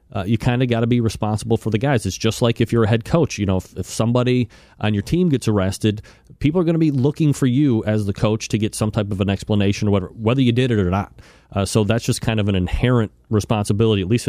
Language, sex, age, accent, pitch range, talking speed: English, male, 30-49, American, 100-120 Hz, 265 wpm